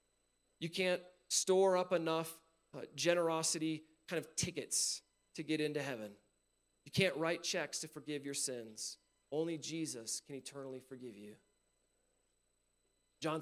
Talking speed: 125 wpm